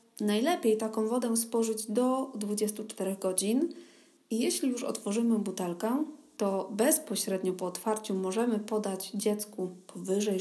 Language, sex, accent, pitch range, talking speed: Polish, female, native, 205-255 Hz, 115 wpm